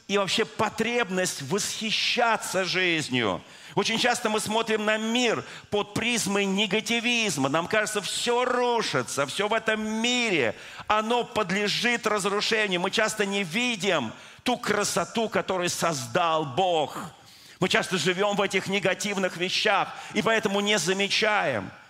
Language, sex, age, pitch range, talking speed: Russian, male, 40-59, 145-215 Hz, 125 wpm